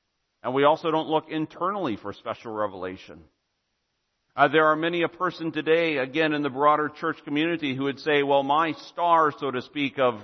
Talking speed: 190 wpm